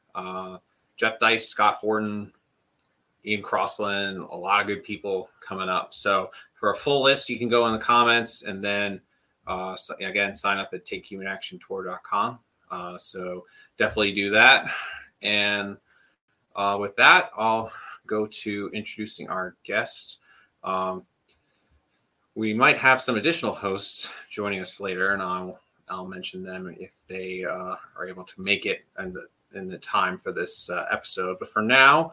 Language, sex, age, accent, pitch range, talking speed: English, male, 30-49, American, 95-110 Hz, 155 wpm